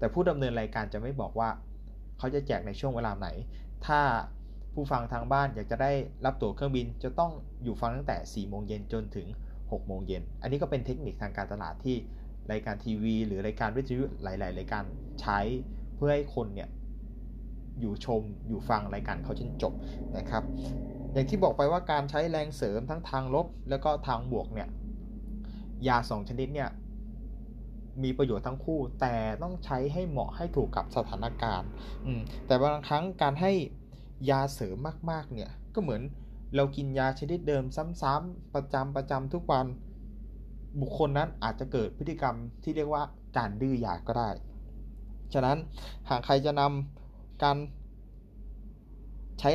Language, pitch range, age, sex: Thai, 110-145 Hz, 20-39, male